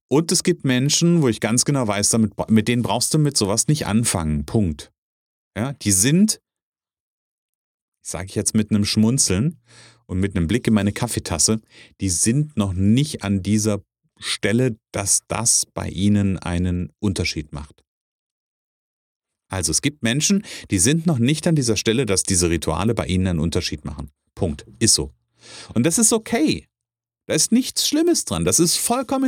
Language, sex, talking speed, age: German, male, 165 wpm, 40-59